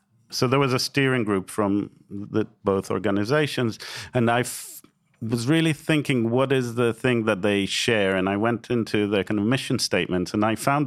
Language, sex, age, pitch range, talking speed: English, male, 40-59, 95-115 Hz, 180 wpm